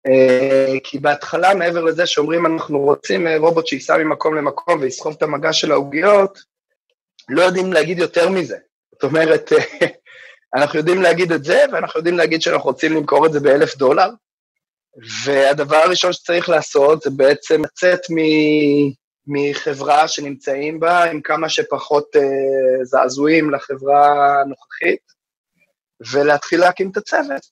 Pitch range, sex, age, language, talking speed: 140-165 Hz, male, 20-39, Hebrew, 135 wpm